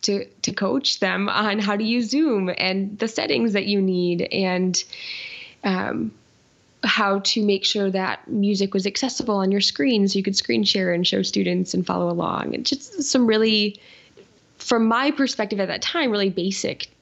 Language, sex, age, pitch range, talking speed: English, female, 10-29, 185-215 Hz, 180 wpm